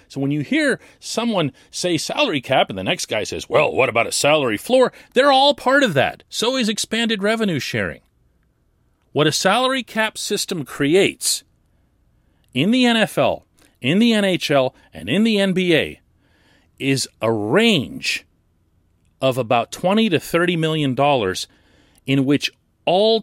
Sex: male